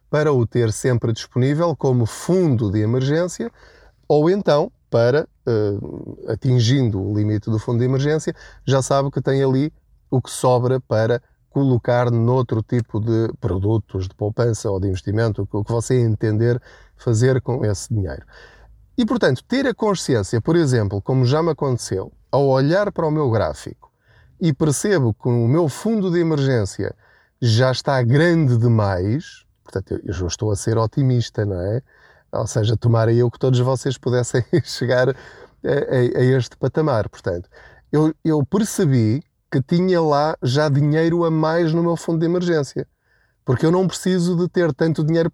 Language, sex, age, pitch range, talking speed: Portuguese, male, 20-39, 115-155 Hz, 155 wpm